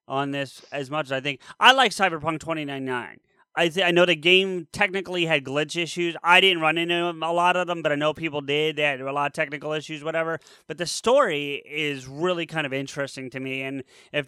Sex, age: male, 30-49